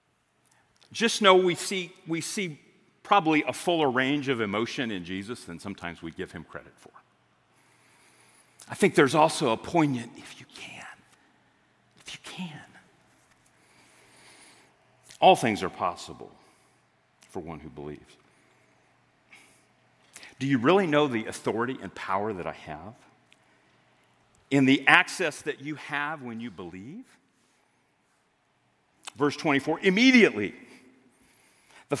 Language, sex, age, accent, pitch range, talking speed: English, male, 40-59, American, 120-185 Hz, 120 wpm